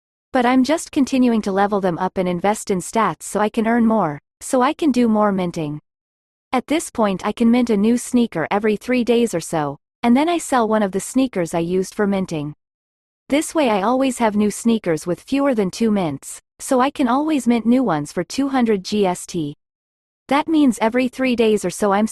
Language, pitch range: English, 180-250 Hz